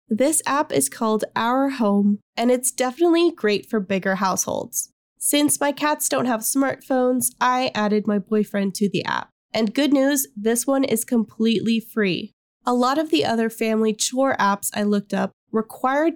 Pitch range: 210-260 Hz